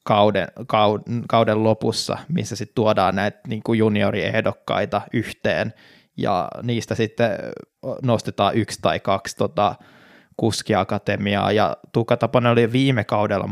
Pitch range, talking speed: 105-115 Hz, 105 wpm